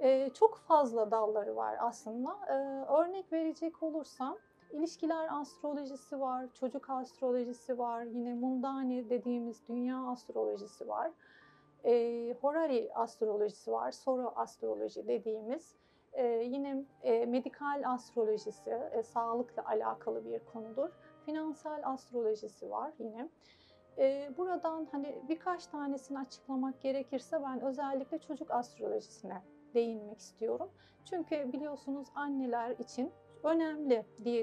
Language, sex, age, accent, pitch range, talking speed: Turkish, female, 40-59, native, 235-295 Hz, 95 wpm